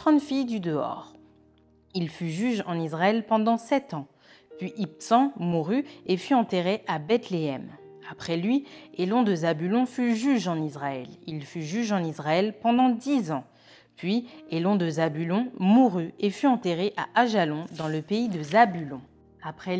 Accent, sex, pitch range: French, female, 160-235 Hz